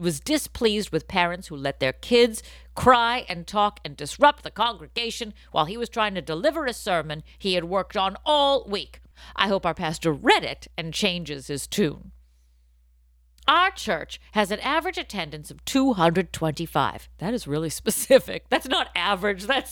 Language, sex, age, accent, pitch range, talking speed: English, female, 50-69, American, 150-230 Hz, 165 wpm